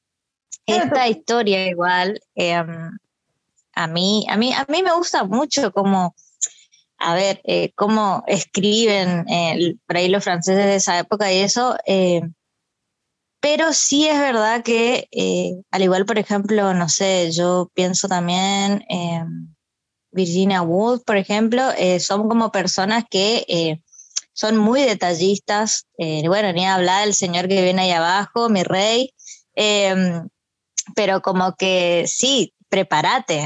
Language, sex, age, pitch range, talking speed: Spanish, female, 20-39, 180-210 Hz, 140 wpm